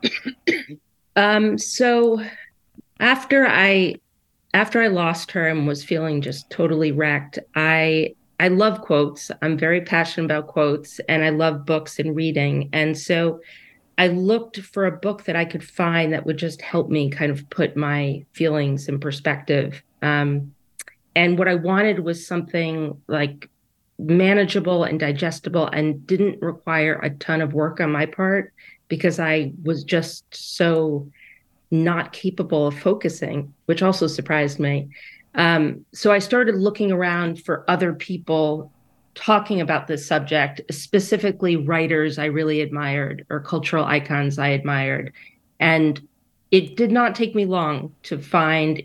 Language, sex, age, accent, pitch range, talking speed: English, female, 40-59, American, 150-180 Hz, 145 wpm